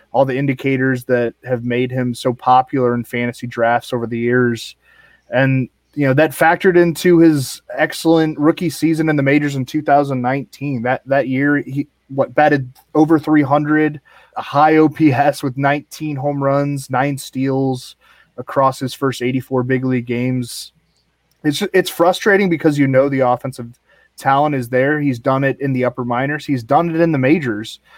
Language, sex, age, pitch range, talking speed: English, male, 20-39, 125-145 Hz, 170 wpm